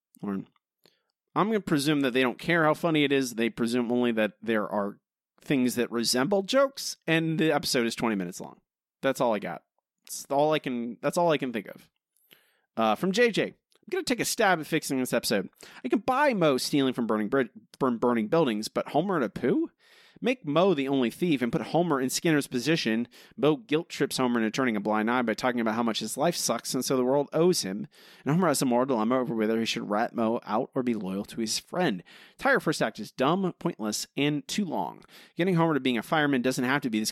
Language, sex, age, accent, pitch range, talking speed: English, male, 30-49, American, 115-160 Hz, 235 wpm